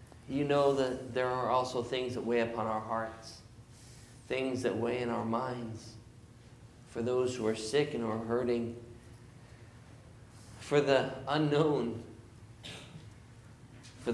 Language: English